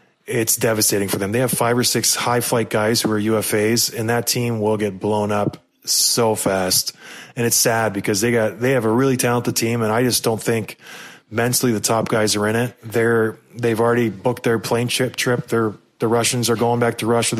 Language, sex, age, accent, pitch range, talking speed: English, male, 20-39, American, 110-125 Hz, 220 wpm